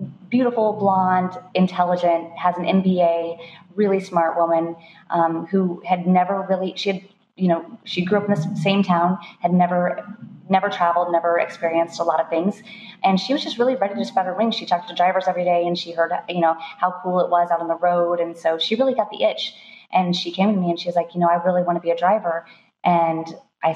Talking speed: 230 wpm